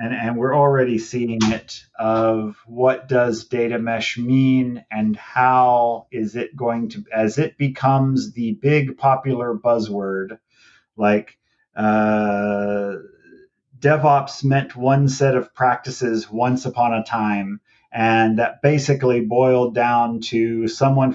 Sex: male